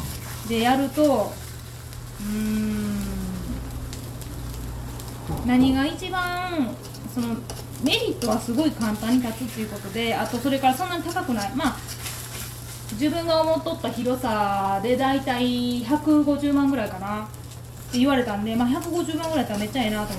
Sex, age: female, 20-39